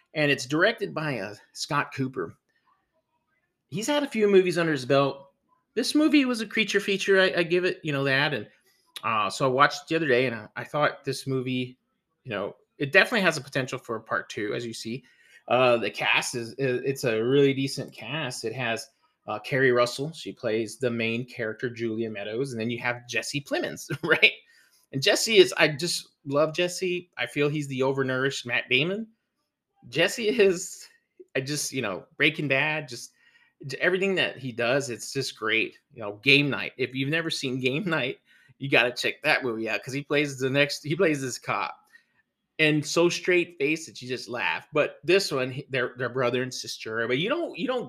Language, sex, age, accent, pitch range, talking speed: English, male, 30-49, American, 125-180 Hz, 205 wpm